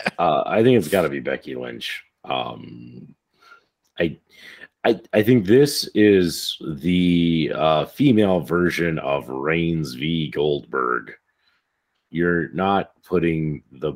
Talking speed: 120 wpm